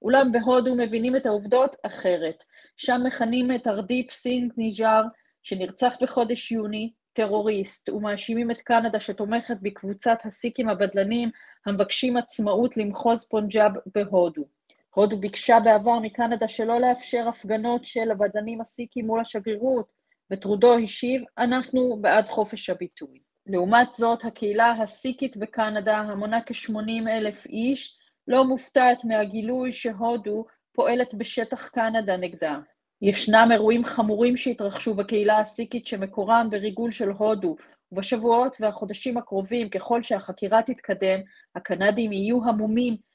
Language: Hebrew